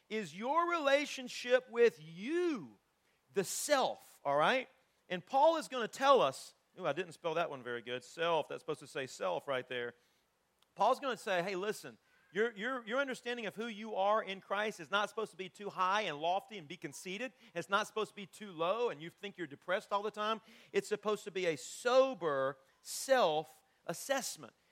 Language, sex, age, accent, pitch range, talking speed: English, male, 40-59, American, 165-230 Hz, 195 wpm